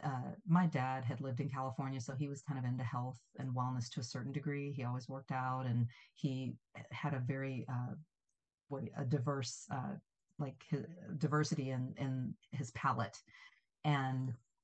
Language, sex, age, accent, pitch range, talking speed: English, female, 40-59, American, 125-145 Hz, 170 wpm